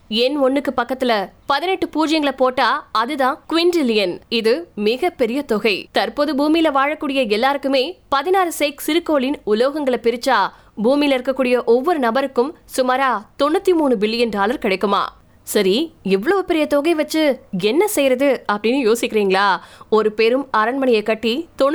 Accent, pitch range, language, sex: native, 225-290 Hz, Tamil, female